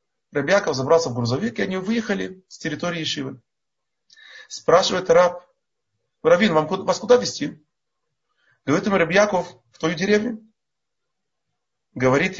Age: 30-49